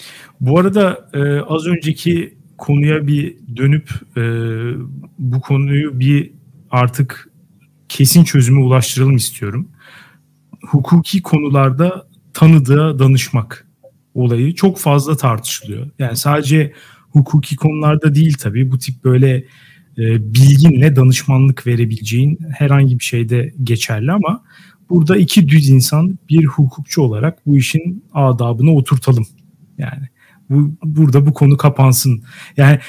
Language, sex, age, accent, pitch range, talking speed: Turkish, male, 40-59, native, 130-160 Hz, 105 wpm